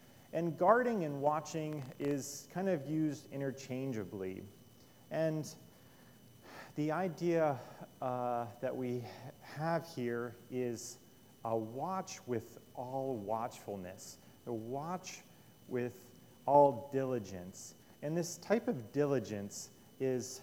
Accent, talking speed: American, 100 wpm